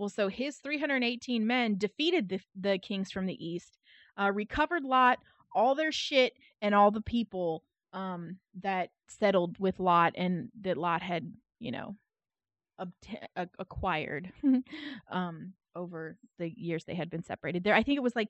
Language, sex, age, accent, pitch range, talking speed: English, female, 20-39, American, 185-255 Hz, 165 wpm